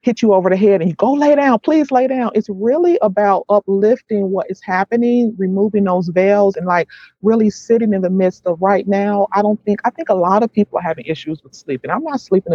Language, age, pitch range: English, 30-49, 165-205 Hz